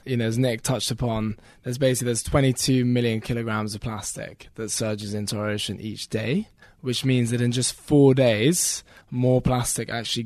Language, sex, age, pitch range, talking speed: English, male, 20-39, 110-130 Hz, 180 wpm